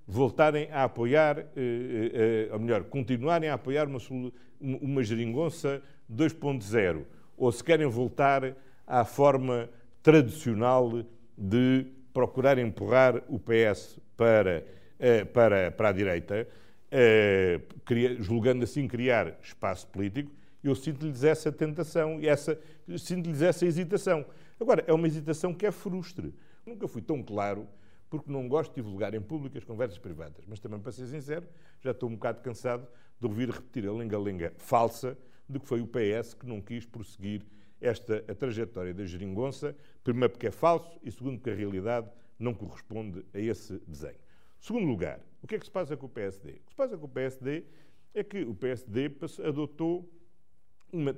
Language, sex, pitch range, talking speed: Portuguese, male, 115-155 Hz, 155 wpm